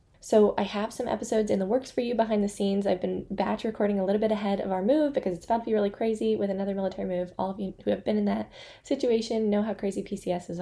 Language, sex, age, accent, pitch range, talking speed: English, female, 10-29, American, 190-220 Hz, 270 wpm